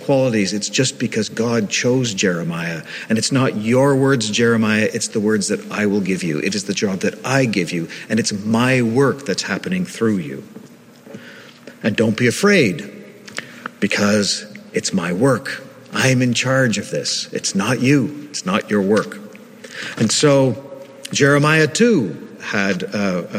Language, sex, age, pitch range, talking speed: English, male, 50-69, 115-150 Hz, 160 wpm